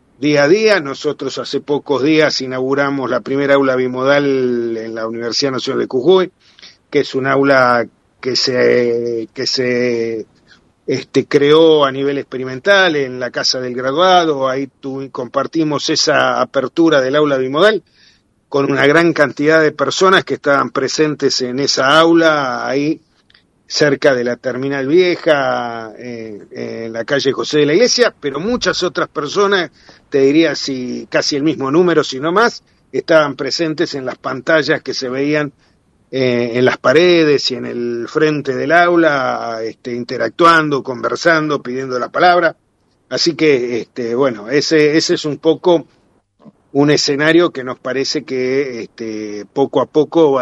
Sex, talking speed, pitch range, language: male, 150 wpm, 125-150 Hz, Spanish